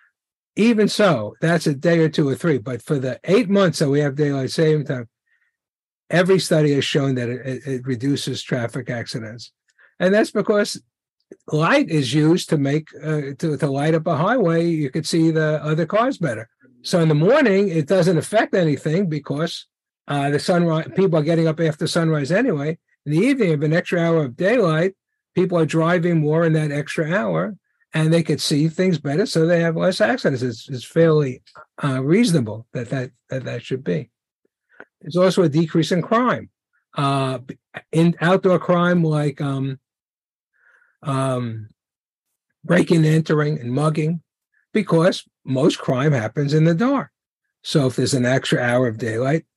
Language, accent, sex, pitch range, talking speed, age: English, American, male, 135-170 Hz, 170 wpm, 60-79